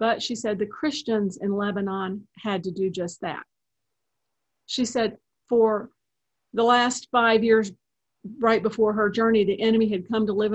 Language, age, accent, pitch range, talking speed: English, 50-69, American, 190-230 Hz, 165 wpm